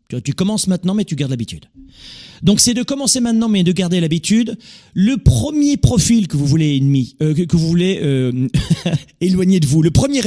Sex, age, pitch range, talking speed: male, 40-59, 130-195 Hz, 195 wpm